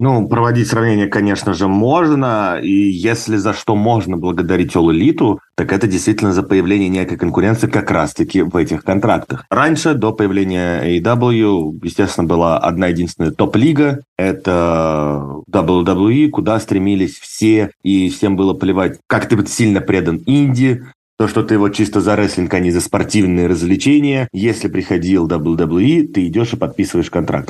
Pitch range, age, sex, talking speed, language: 90-115 Hz, 30-49, male, 155 wpm, Russian